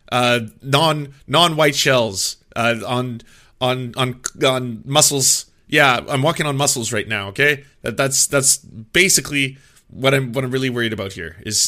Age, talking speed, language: 30-49, 160 wpm, English